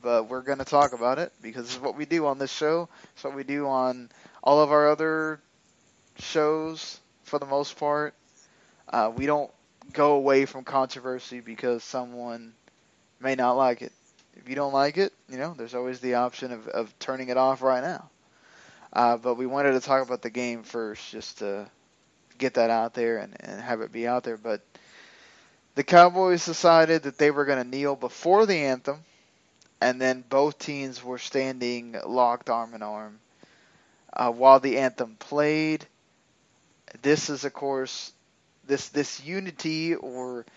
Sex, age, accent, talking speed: male, 20-39, American, 175 wpm